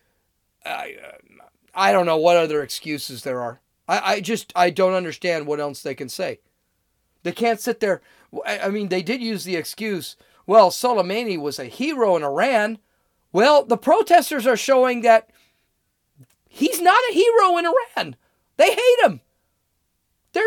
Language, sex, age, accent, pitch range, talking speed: English, male, 40-59, American, 155-225 Hz, 160 wpm